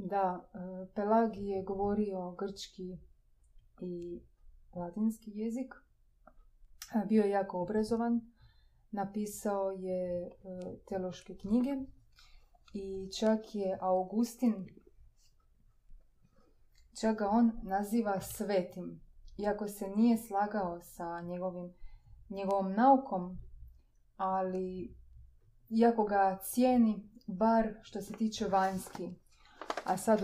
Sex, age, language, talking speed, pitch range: female, 20-39, Croatian, 85 wpm, 185-220 Hz